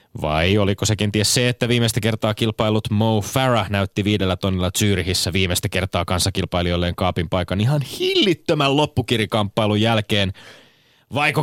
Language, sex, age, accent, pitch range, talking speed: Finnish, male, 30-49, native, 90-115 Hz, 130 wpm